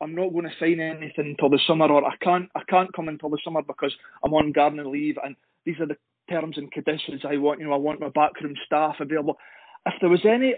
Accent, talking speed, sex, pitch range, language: British, 250 wpm, male, 155-185 Hz, English